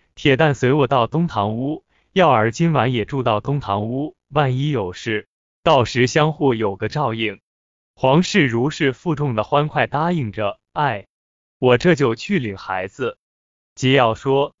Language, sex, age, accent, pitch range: Chinese, male, 20-39, native, 110-150 Hz